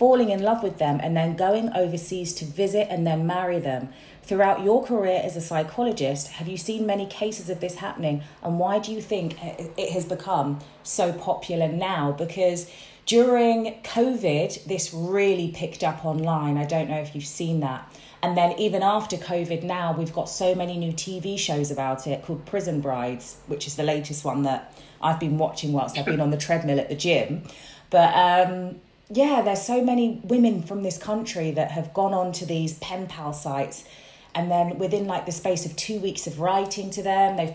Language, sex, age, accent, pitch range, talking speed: English, female, 30-49, British, 155-195 Hz, 200 wpm